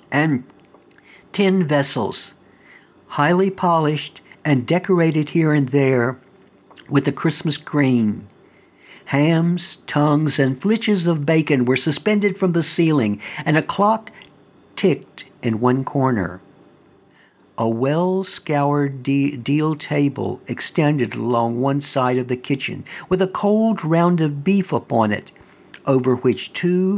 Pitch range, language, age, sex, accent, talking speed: 130-170 Hz, English, 60-79, male, American, 120 wpm